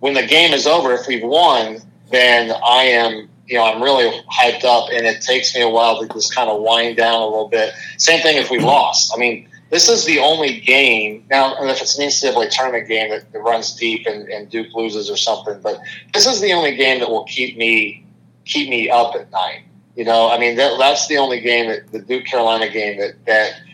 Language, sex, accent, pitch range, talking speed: English, male, American, 115-140 Hz, 230 wpm